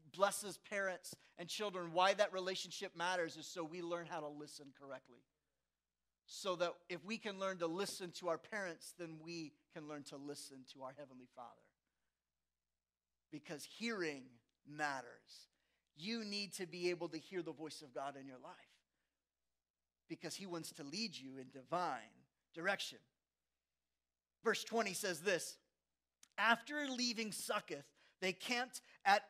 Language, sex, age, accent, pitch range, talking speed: English, male, 40-59, American, 155-225 Hz, 150 wpm